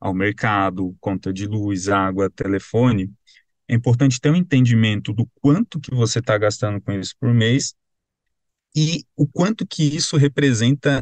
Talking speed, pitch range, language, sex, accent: 150 wpm, 110-135 Hz, Portuguese, male, Brazilian